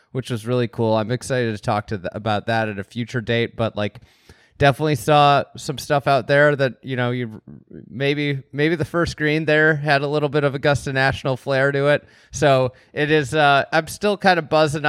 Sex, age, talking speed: male, 30-49, 215 wpm